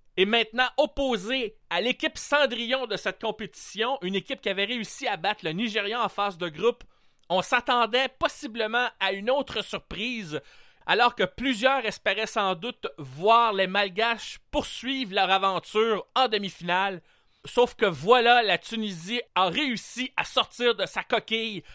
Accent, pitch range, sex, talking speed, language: Canadian, 190-245 Hz, male, 150 wpm, French